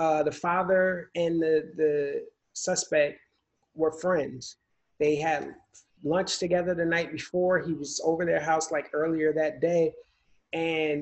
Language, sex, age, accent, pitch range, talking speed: English, male, 30-49, American, 150-180 Hz, 140 wpm